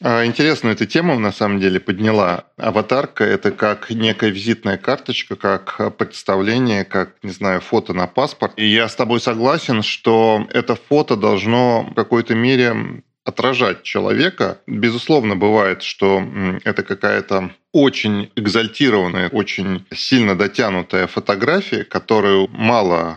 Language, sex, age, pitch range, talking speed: Russian, male, 20-39, 95-115 Hz, 125 wpm